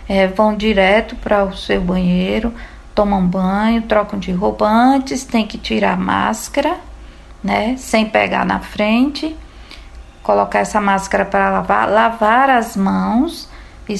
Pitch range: 200-260 Hz